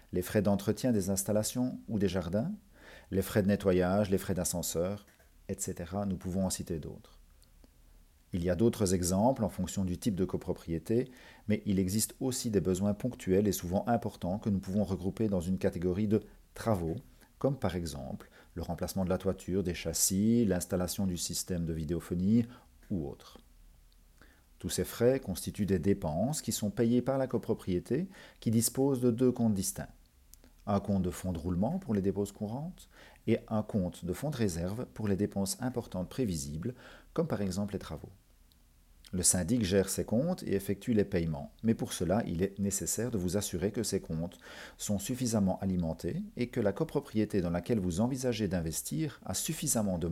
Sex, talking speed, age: male, 180 wpm, 40-59